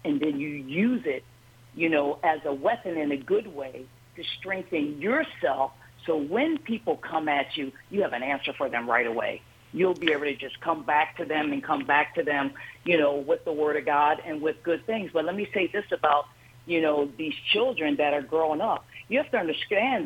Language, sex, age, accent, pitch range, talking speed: English, female, 50-69, American, 150-245 Hz, 220 wpm